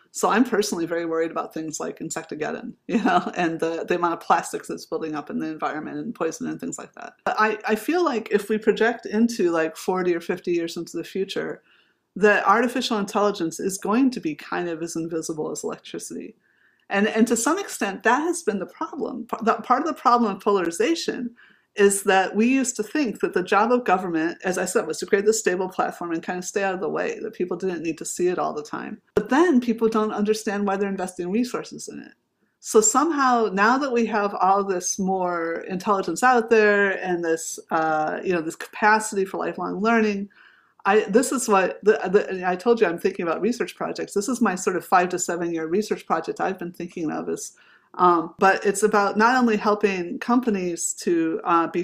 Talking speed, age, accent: 215 wpm, 30-49, American